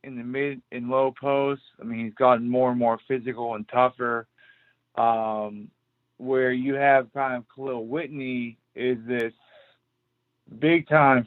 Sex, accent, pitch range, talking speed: male, American, 115-140 Hz, 145 wpm